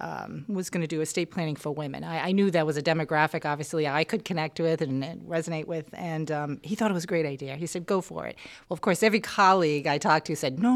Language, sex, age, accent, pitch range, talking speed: English, female, 40-59, American, 155-200 Hz, 275 wpm